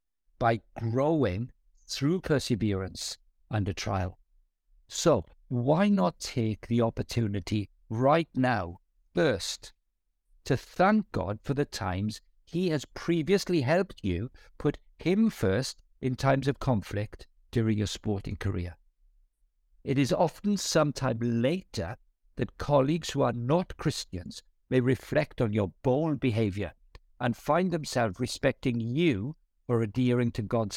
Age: 60-79